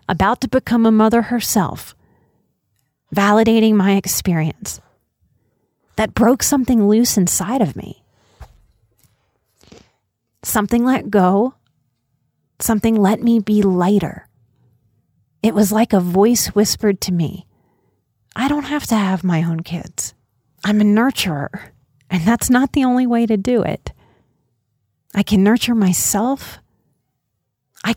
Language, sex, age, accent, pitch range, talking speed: English, female, 30-49, American, 135-220 Hz, 120 wpm